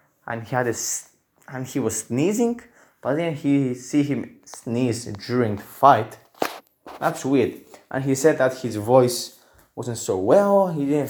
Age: 20-39